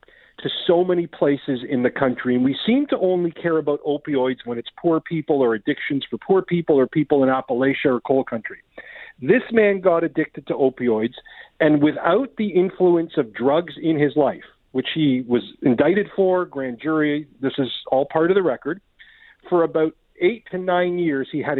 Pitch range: 140-190 Hz